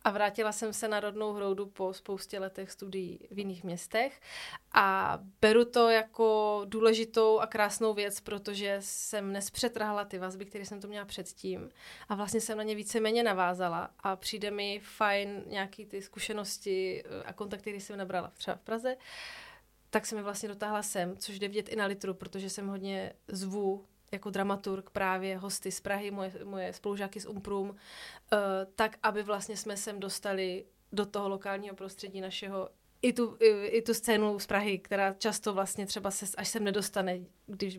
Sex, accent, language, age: female, native, Czech, 20-39